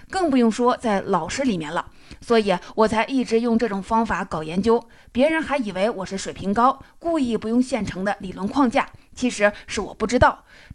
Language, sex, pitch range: Chinese, female, 200-255 Hz